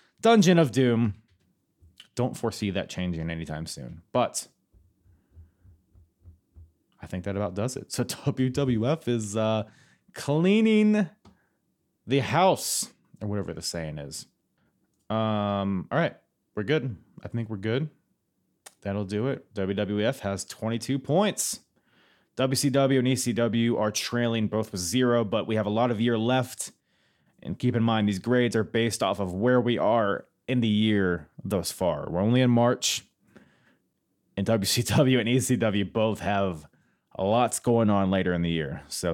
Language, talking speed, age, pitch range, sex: English, 145 wpm, 30-49, 100-130 Hz, male